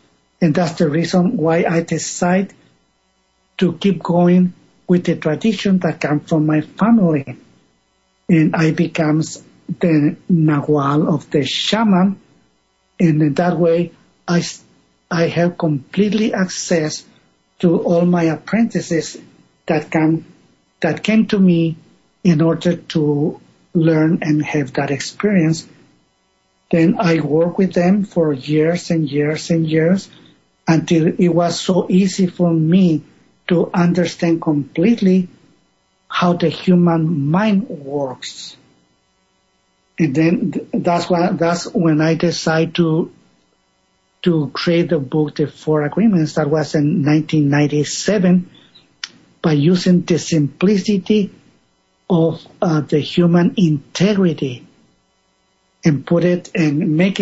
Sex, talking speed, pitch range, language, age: male, 115 wpm, 150-180 Hz, English, 50-69